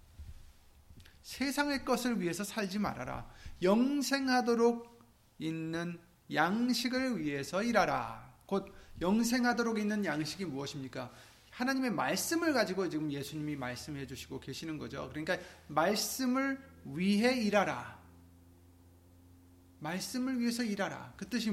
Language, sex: Korean, male